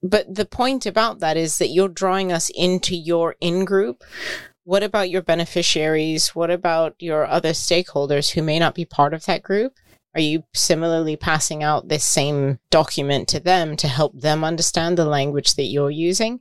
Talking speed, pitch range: 180 wpm, 145-180 Hz